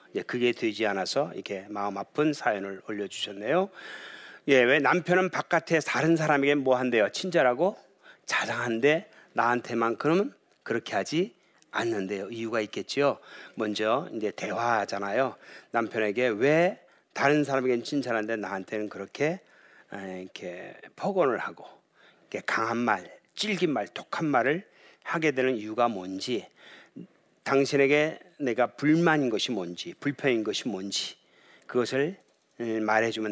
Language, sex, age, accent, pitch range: Korean, male, 40-59, native, 105-150 Hz